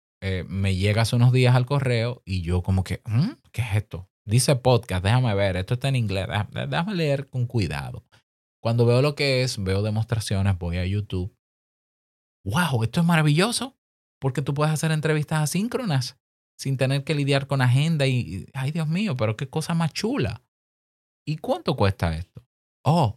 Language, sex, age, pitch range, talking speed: Spanish, male, 20-39, 95-135 Hz, 175 wpm